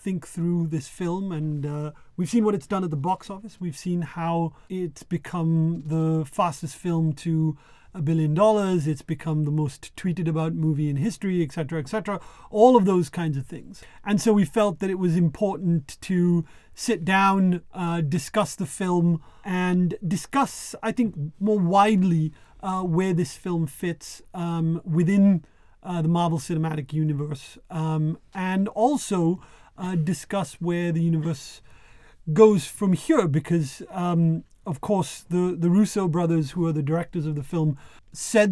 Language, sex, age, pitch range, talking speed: Hindi, male, 30-49, 160-185 Hz, 160 wpm